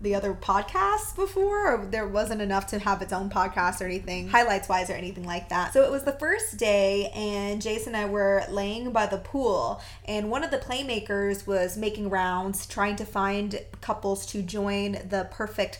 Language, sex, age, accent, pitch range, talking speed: English, female, 20-39, American, 195-245 Hz, 200 wpm